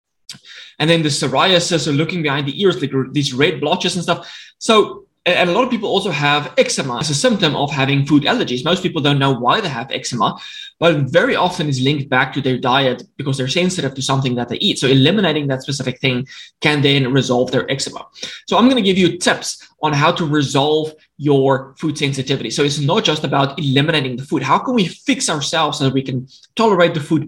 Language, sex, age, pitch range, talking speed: English, male, 20-39, 135-180 Hz, 220 wpm